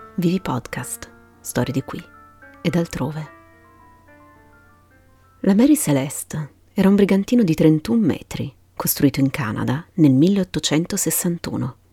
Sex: female